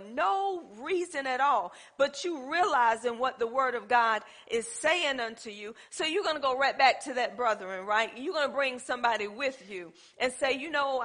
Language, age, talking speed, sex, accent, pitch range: English, 40-59, 195 wpm, female, American, 225-280 Hz